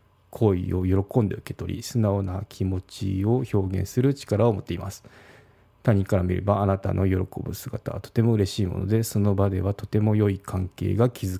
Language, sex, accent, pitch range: Japanese, male, native, 95-115 Hz